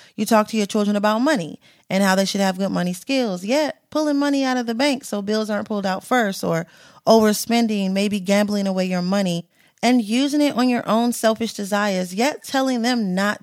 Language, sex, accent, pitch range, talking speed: English, female, American, 195-240 Hz, 210 wpm